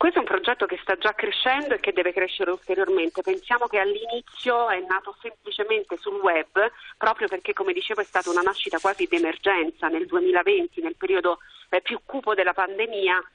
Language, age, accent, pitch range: Italian, 40-59, native, 170-250 Hz